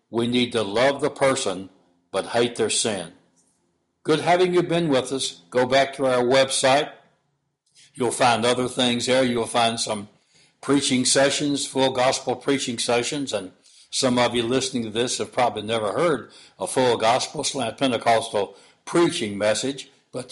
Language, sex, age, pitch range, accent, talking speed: English, male, 60-79, 110-135 Hz, American, 160 wpm